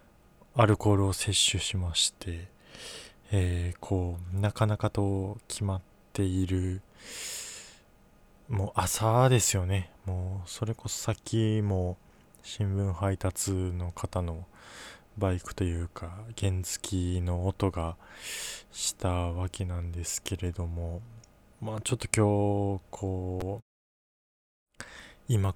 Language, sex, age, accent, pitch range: Japanese, male, 20-39, native, 90-110 Hz